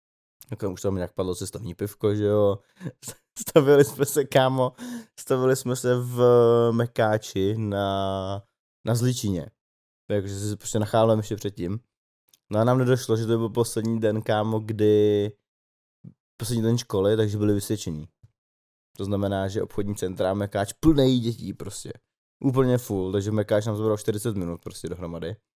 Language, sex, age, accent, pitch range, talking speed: Czech, male, 20-39, native, 100-125 Hz, 150 wpm